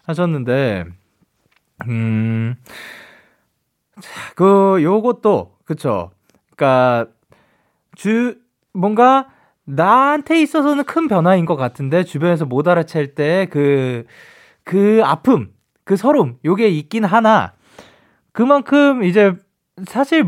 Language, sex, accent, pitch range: Korean, male, native, 135-205 Hz